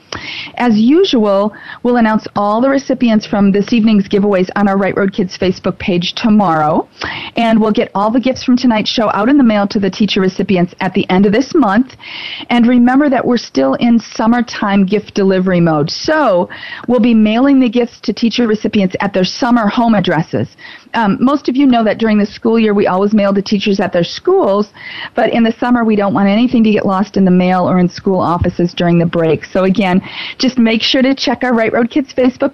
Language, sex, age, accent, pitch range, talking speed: English, female, 40-59, American, 195-250 Hz, 215 wpm